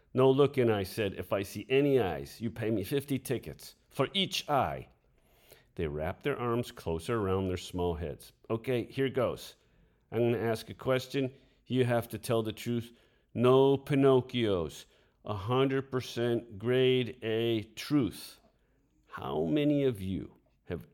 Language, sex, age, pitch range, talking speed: English, male, 50-69, 95-135 Hz, 150 wpm